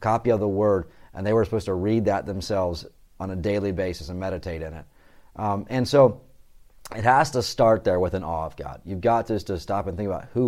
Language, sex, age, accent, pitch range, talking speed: English, male, 30-49, American, 95-110 Hz, 245 wpm